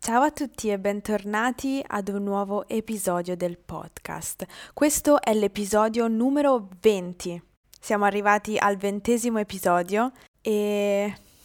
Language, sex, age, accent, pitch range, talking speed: Italian, female, 20-39, native, 185-235 Hz, 115 wpm